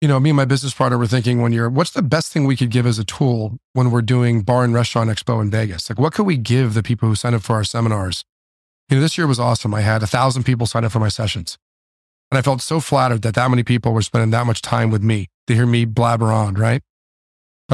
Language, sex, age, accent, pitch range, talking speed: English, male, 40-59, American, 110-140 Hz, 275 wpm